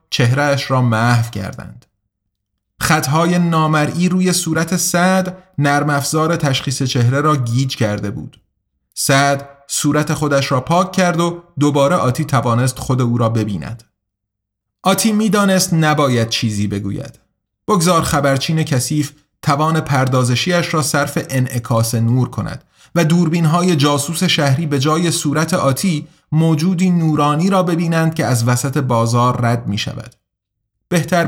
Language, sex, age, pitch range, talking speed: Persian, male, 30-49, 120-160 Hz, 130 wpm